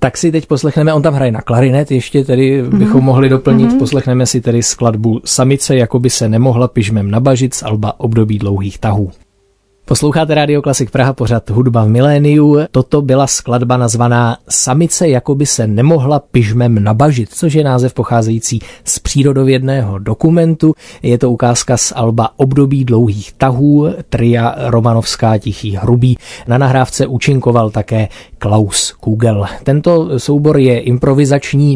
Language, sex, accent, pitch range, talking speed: Czech, male, native, 115-140 Hz, 145 wpm